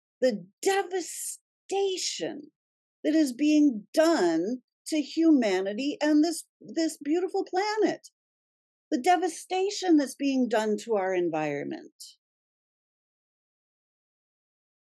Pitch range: 240-330 Hz